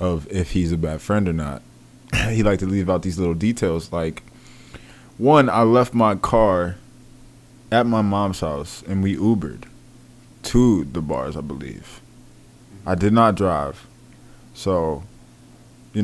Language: English